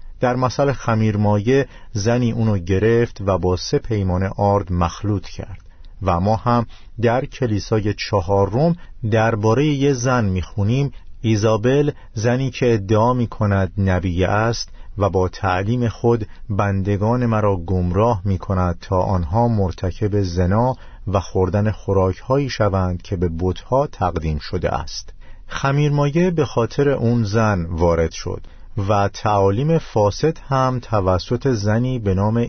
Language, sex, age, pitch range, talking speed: Persian, male, 50-69, 95-120 Hz, 130 wpm